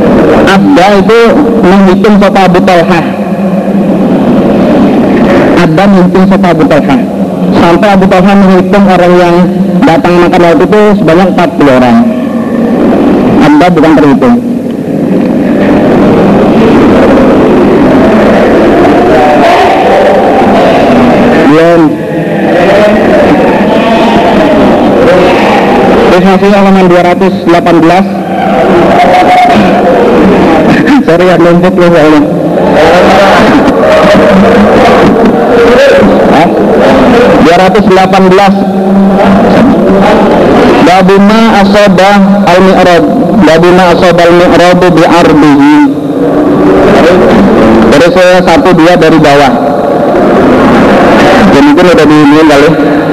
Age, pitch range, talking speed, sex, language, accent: 50-69, 175-200 Hz, 50 wpm, male, Indonesian, native